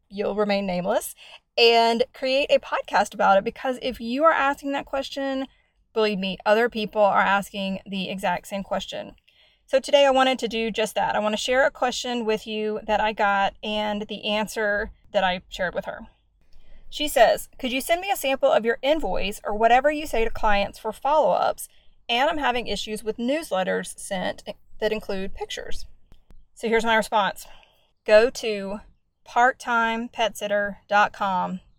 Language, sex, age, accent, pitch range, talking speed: English, female, 30-49, American, 190-230 Hz, 170 wpm